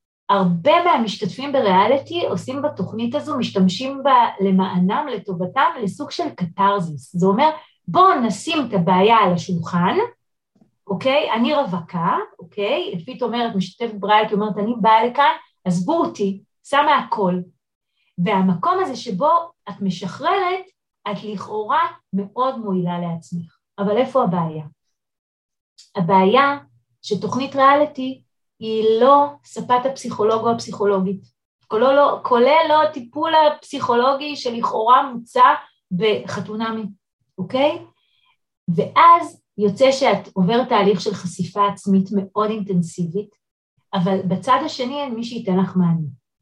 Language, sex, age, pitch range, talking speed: Hebrew, female, 30-49, 190-280 Hz, 110 wpm